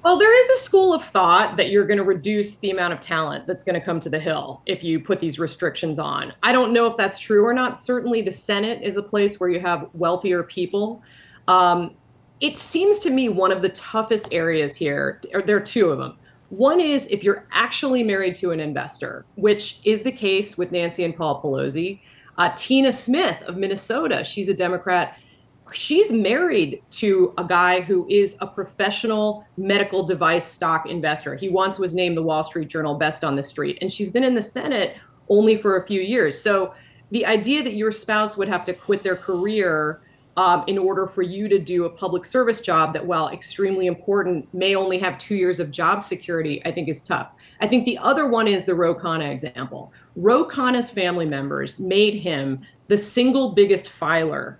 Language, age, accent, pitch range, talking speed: English, 30-49, American, 170-210 Hz, 200 wpm